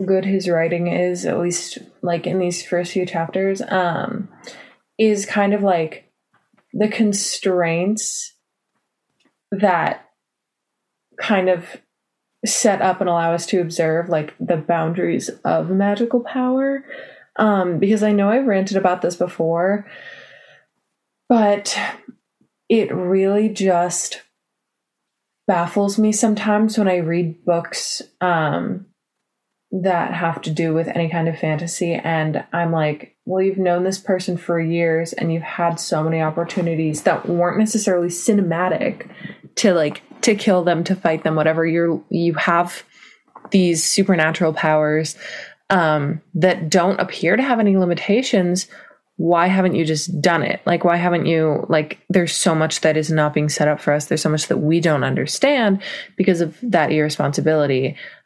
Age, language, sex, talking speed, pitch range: 20-39, English, female, 145 wpm, 165-200 Hz